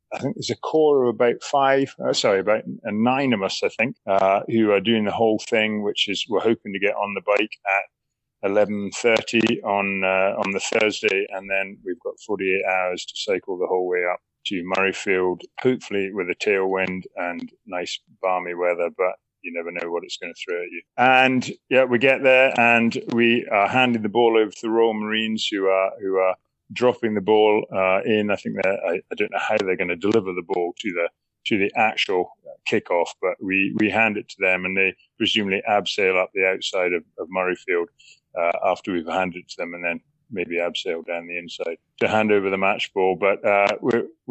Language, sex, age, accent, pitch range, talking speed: English, male, 30-49, British, 95-115 Hz, 215 wpm